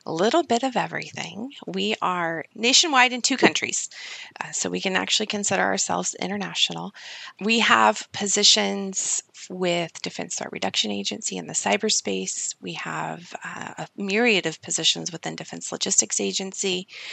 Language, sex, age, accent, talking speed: English, female, 30-49, American, 145 wpm